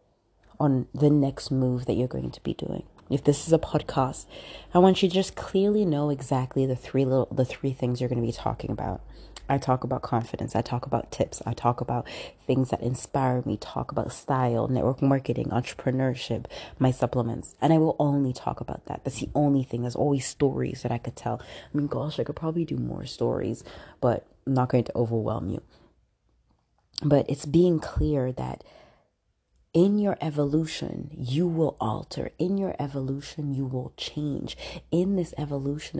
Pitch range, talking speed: 125-155 Hz, 185 wpm